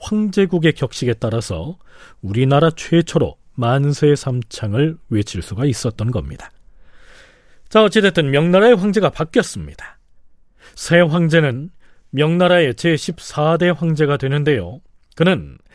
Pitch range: 120-170 Hz